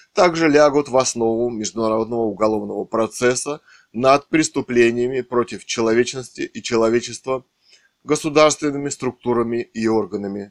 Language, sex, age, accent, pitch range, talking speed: Russian, male, 20-39, native, 110-140 Hz, 95 wpm